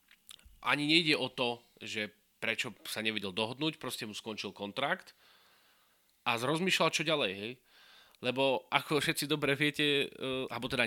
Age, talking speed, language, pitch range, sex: 30-49, 140 wpm, Slovak, 120-150 Hz, male